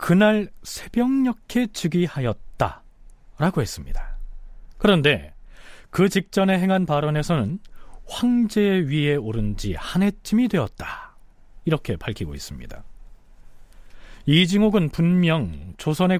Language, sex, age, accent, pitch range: Korean, male, 40-59, native, 125-185 Hz